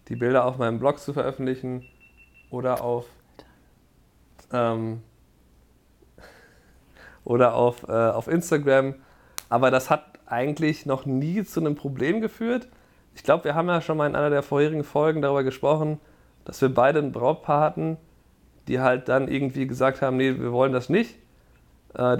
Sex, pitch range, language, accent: male, 120-145 Hz, German, German